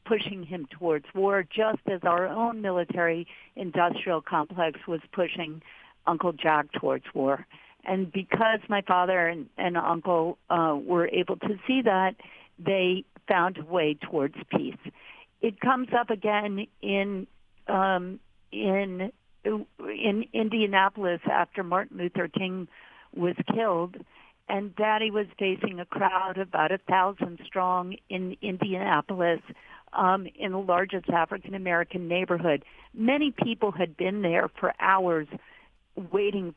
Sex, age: female, 50-69